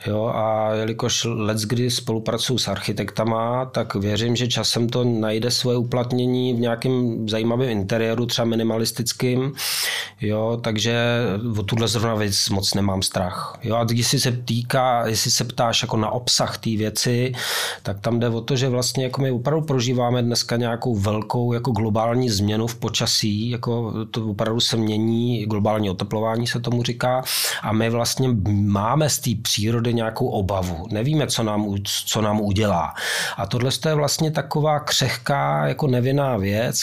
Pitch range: 110-125 Hz